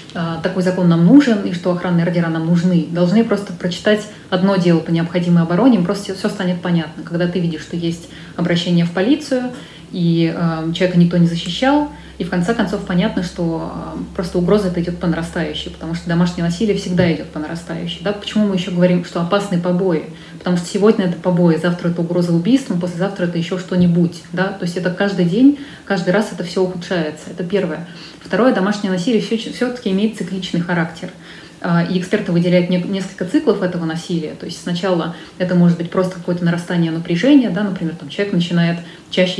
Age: 20-39